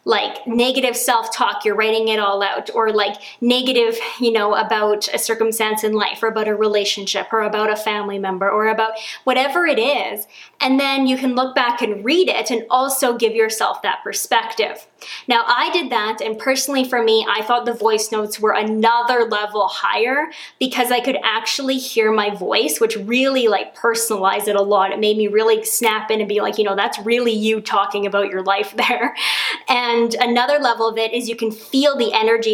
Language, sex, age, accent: English, female, 20-39, American